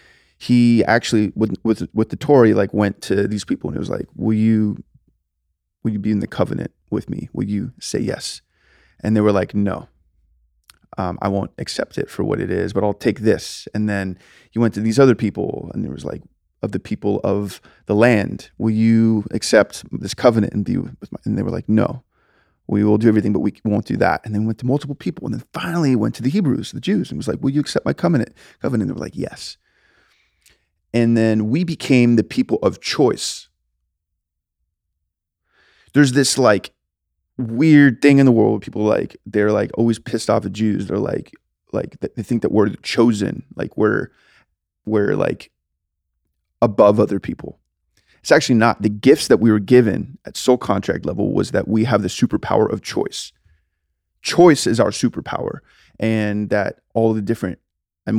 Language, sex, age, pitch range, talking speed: English, male, 20-39, 90-115 Hz, 195 wpm